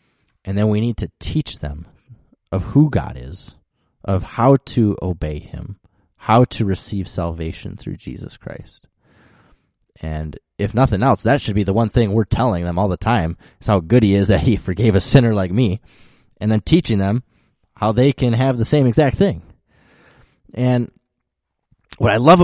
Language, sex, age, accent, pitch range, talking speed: English, male, 20-39, American, 90-115 Hz, 180 wpm